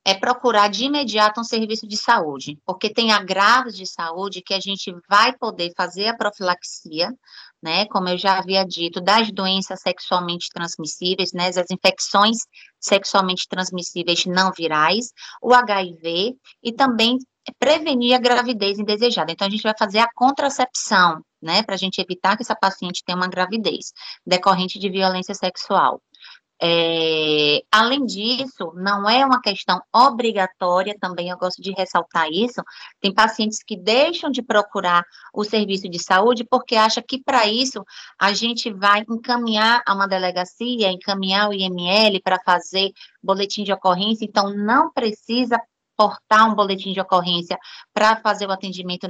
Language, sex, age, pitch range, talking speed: Portuguese, female, 20-39, 185-225 Hz, 150 wpm